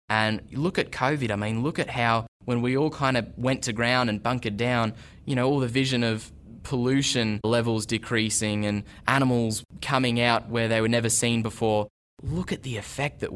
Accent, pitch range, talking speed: Australian, 100-125 Hz, 200 wpm